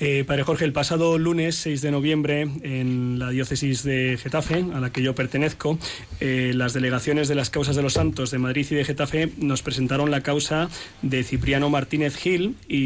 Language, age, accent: Spanish, 20-39, Spanish